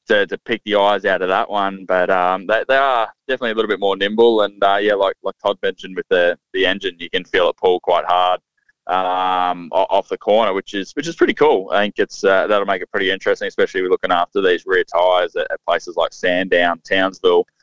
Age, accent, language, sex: 20-39, Australian, English, male